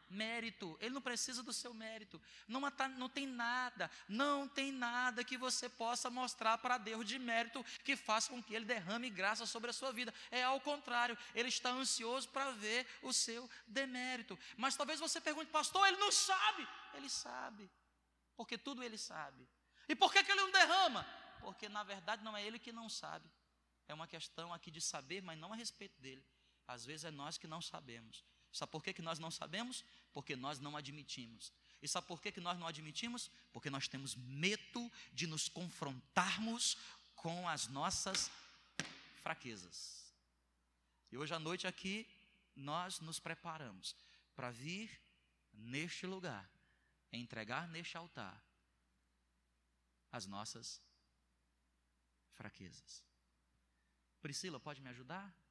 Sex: male